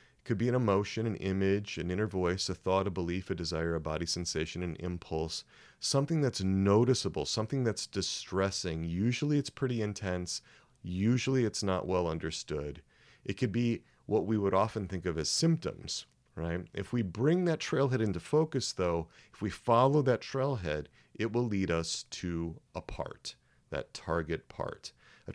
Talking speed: 170 wpm